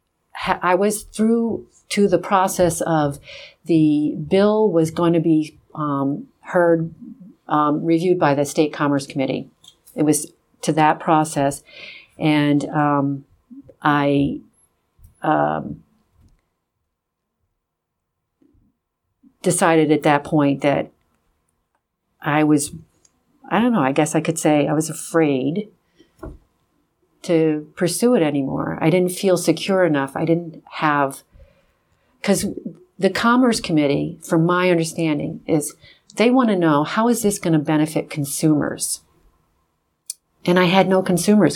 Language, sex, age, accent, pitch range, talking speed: English, female, 50-69, American, 150-190 Hz, 125 wpm